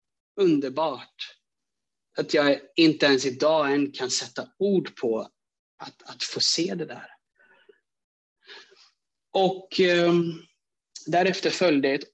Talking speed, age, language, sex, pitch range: 110 wpm, 30-49, Swedish, male, 130-170 Hz